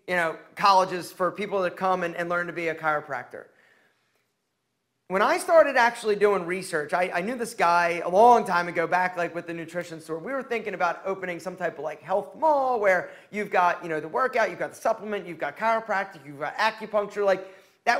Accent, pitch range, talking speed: American, 175-240 Hz, 215 wpm